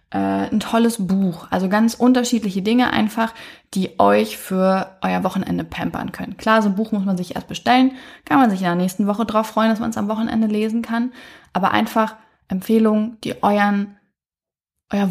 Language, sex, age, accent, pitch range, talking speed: German, female, 20-39, German, 185-225 Hz, 185 wpm